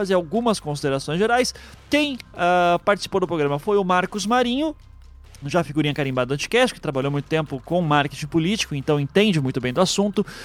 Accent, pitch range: Brazilian, 145-190 Hz